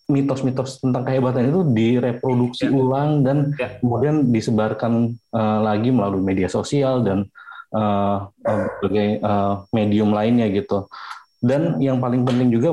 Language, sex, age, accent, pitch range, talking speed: Indonesian, male, 30-49, native, 110-135 Hz, 125 wpm